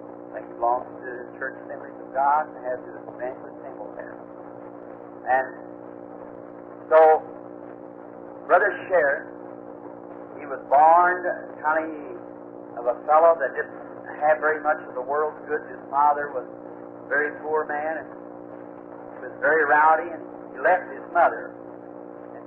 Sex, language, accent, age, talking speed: male, English, American, 50-69, 140 wpm